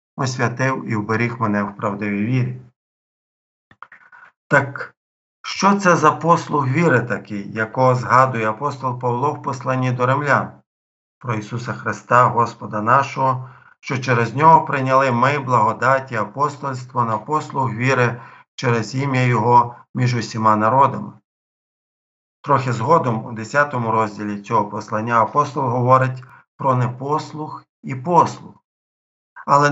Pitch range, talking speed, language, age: 115-145 Hz, 115 wpm, Ukrainian, 50-69